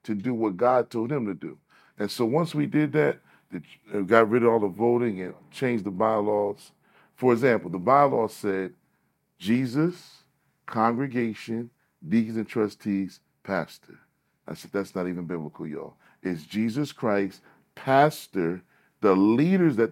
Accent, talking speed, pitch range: American, 150 wpm, 95-125 Hz